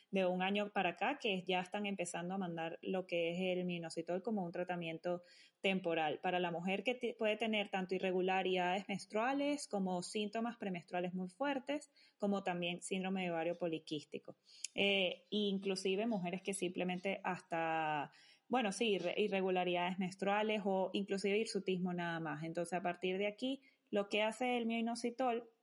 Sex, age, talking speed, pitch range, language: female, 20-39, 150 wpm, 180-215 Hz, Spanish